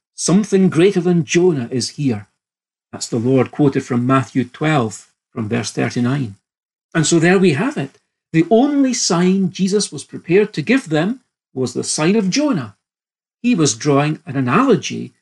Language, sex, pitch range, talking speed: English, male, 135-200 Hz, 160 wpm